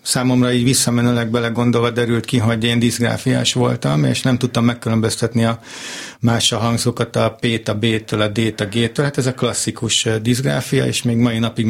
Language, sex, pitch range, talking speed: Hungarian, male, 115-130 Hz, 190 wpm